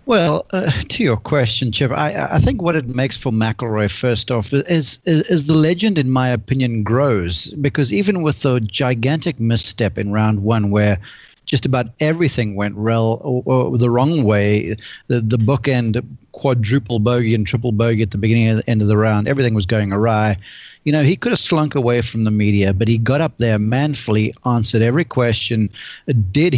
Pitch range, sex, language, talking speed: 110-135 Hz, male, English, 195 wpm